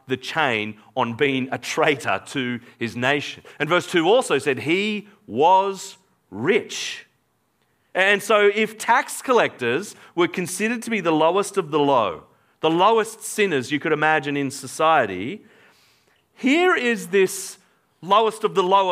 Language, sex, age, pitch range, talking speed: English, male, 40-59, 135-195 Hz, 145 wpm